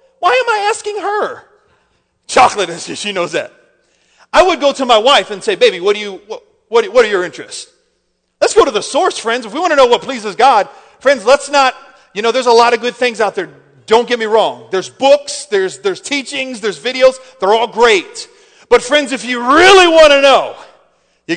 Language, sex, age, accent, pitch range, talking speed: English, male, 40-59, American, 230-340 Hz, 215 wpm